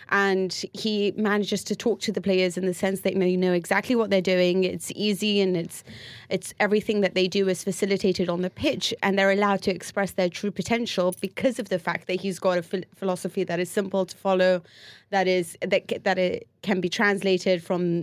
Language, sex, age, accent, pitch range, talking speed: English, female, 30-49, British, 175-200 Hz, 215 wpm